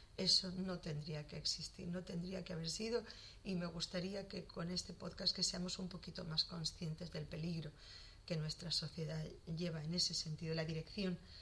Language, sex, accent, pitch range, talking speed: Spanish, female, Spanish, 155-180 Hz, 180 wpm